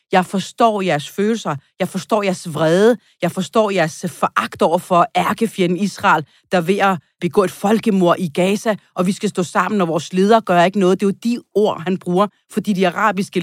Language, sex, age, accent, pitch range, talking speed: Danish, female, 40-59, native, 170-220 Hz, 200 wpm